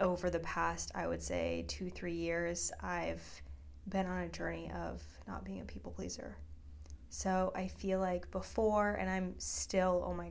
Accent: American